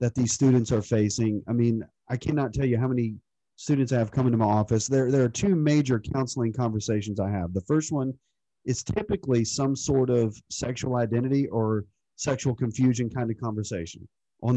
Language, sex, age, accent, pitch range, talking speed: English, male, 40-59, American, 110-135 Hz, 190 wpm